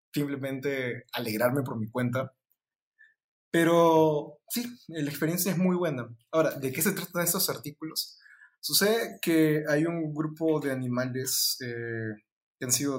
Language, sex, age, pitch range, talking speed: Spanish, male, 20-39, 130-165 Hz, 140 wpm